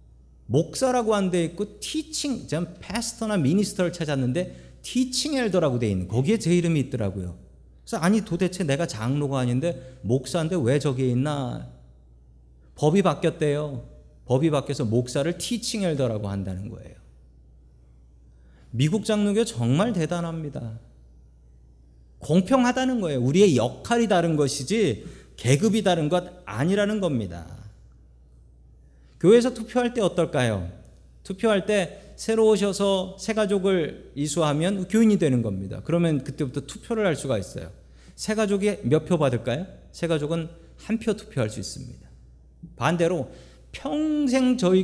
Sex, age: male, 40-59